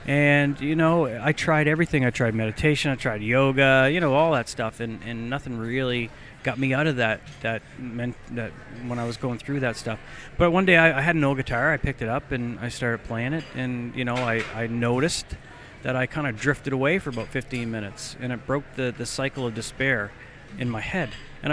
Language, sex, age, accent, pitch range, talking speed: English, male, 40-59, American, 125-150 Hz, 230 wpm